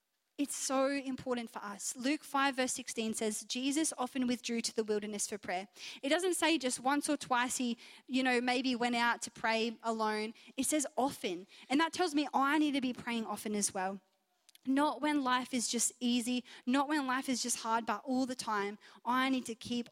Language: English